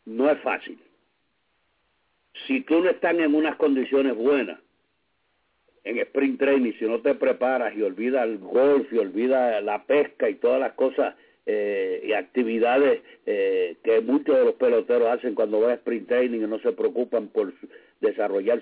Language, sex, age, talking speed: English, male, 60-79, 165 wpm